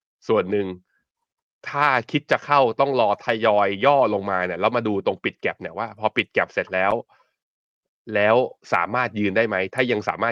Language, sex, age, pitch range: Thai, male, 20-39, 95-125 Hz